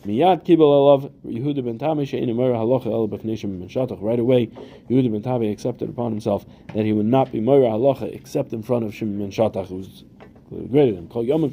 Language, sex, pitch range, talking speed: English, male, 110-140 Hz, 110 wpm